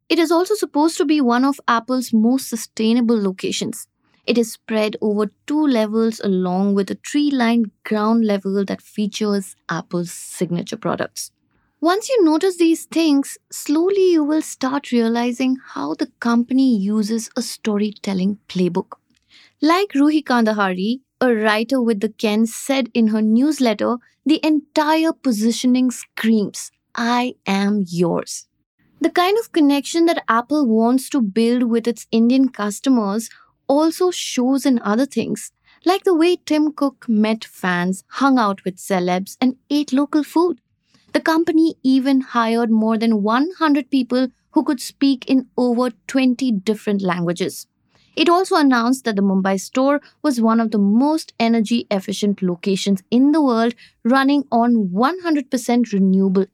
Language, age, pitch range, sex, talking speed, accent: English, 20-39, 215-290 Hz, female, 145 wpm, Indian